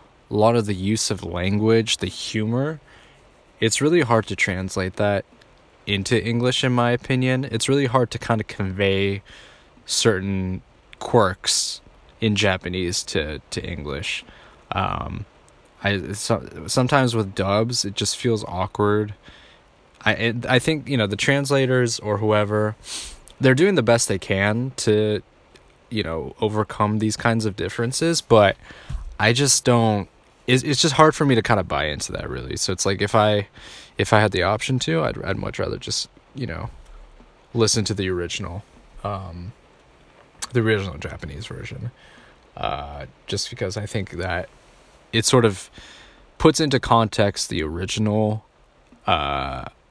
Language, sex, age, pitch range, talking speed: English, male, 20-39, 100-120 Hz, 150 wpm